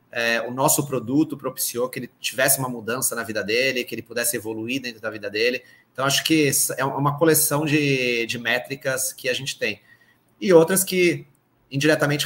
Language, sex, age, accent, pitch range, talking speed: Portuguese, male, 30-49, Brazilian, 115-140 Hz, 190 wpm